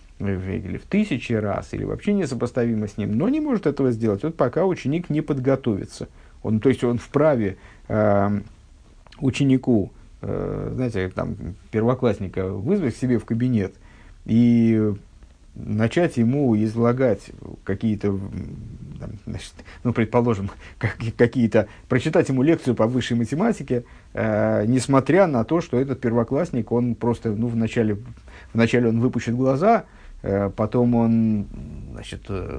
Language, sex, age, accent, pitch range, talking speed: Russian, male, 50-69, native, 105-130 Hz, 120 wpm